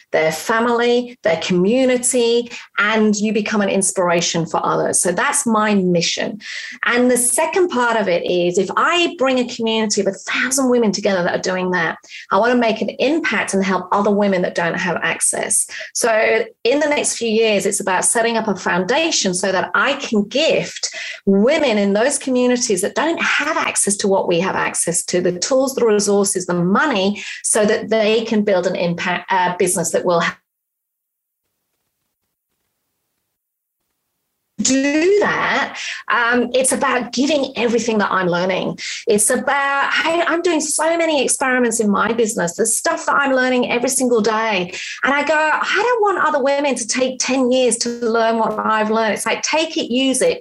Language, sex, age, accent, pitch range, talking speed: English, female, 30-49, British, 200-265 Hz, 180 wpm